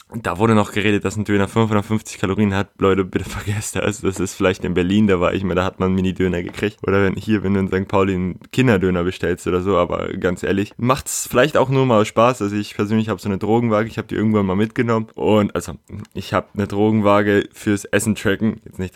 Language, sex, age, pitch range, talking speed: German, male, 20-39, 90-110 Hz, 240 wpm